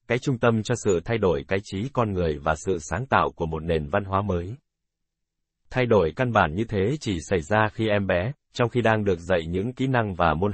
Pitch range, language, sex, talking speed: 85-115 Hz, Vietnamese, male, 245 wpm